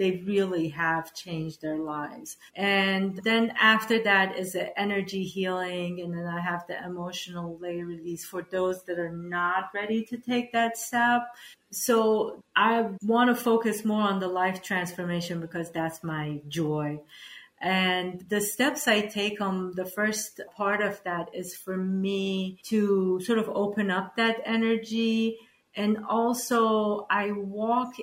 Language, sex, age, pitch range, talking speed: English, female, 40-59, 175-210 Hz, 150 wpm